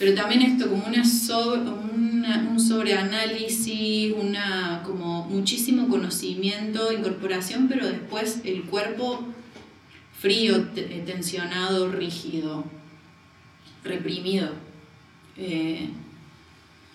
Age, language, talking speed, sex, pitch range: 30-49, Spanish, 85 wpm, female, 170-220 Hz